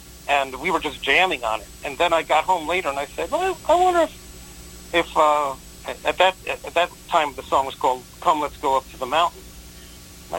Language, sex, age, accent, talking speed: English, male, 50-69, American, 225 wpm